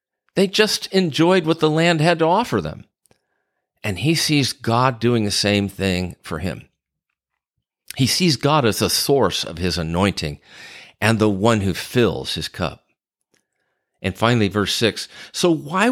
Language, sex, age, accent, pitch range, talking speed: English, male, 50-69, American, 95-135 Hz, 160 wpm